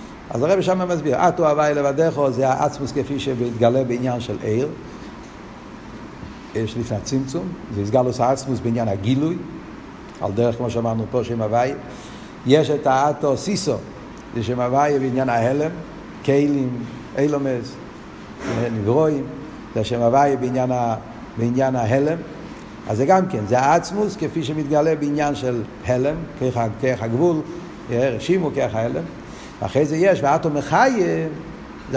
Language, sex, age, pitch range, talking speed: Hebrew, male, 60-79, 130-180 Hz, 125 wpm